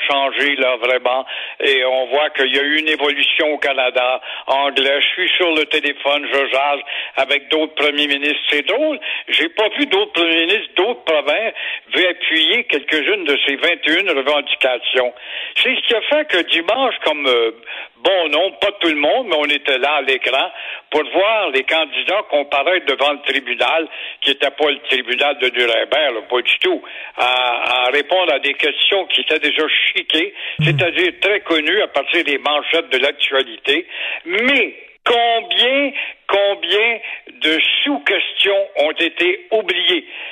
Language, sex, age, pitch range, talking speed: French, male, 60-79, 145-205 Hz, 160 wpm